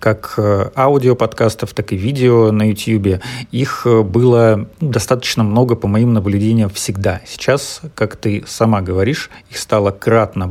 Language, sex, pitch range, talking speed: Russian, male, 100-120 Hz, 130 wpm